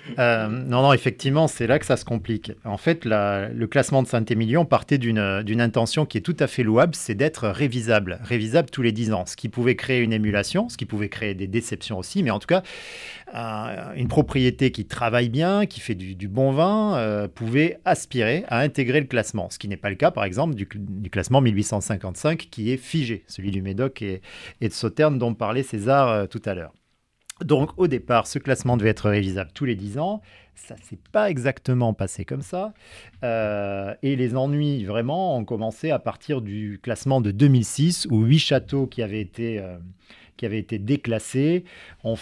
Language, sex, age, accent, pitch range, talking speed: French, male, 40-59, French, 105-130 Hz, 205 wpm